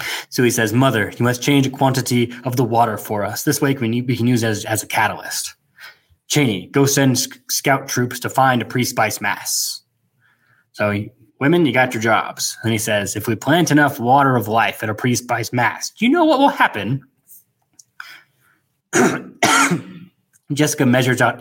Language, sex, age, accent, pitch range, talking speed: English, male, 20-39, American, 110-145 Hz, 175 wpm